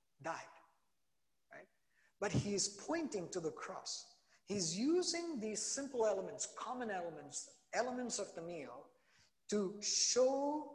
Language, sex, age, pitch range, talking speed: English, male, 50-69, 155-245 Hz, 115 wpm